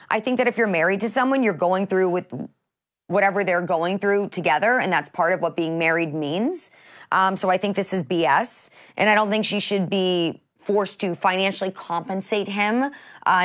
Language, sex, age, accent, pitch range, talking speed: English, female, 30-49, American, 175-220 Hz, 200 wpm